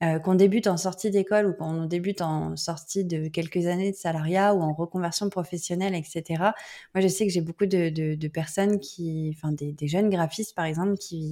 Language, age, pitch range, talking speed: French, 20-39, 165-205 Hz, 210 wpm